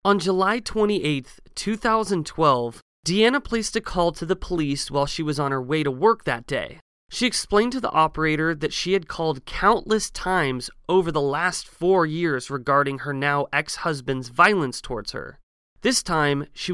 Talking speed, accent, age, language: 170 wpm, American, 30-49, English